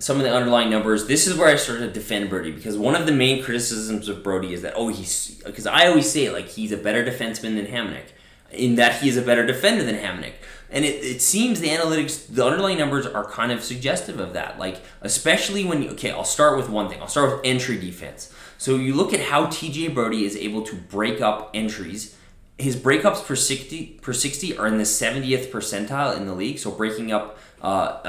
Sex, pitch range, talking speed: male, 105-135 Hz, 225 wpm